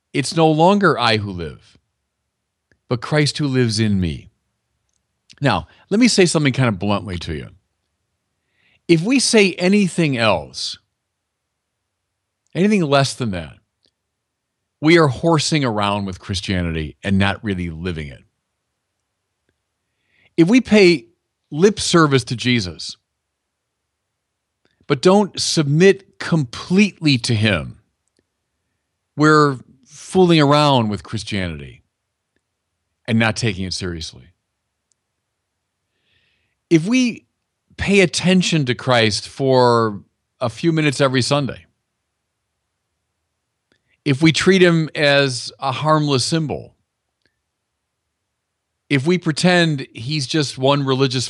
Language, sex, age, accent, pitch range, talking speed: English, male, 40-59, American, 100-150 Hz, 110 wpm